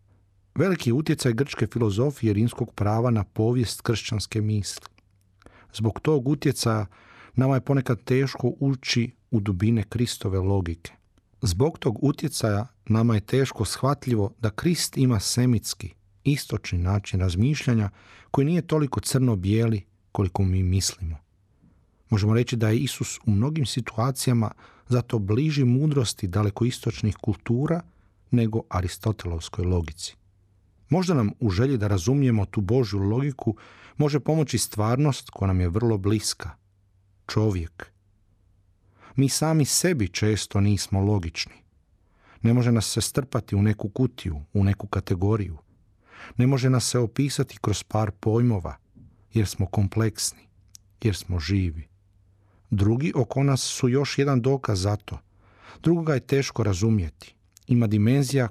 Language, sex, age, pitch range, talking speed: Croatian, male, 40-59, 100-125 Hz, 125 wpm